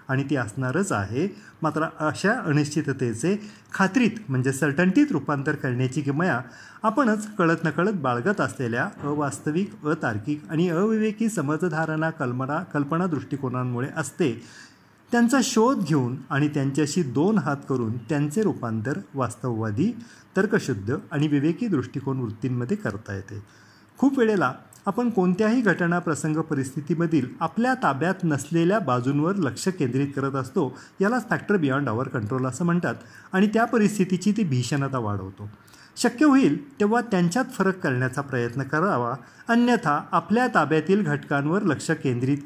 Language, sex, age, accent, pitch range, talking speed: Marathi, male, 40-59, native, 130-190 Hz, 110 wpm